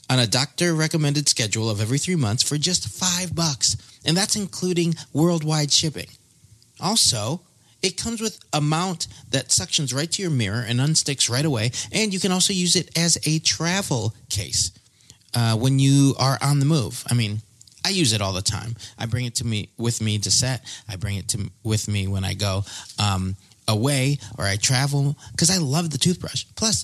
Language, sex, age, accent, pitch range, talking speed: English, male, 30-49, American, 110-155 Hz, 195 wpm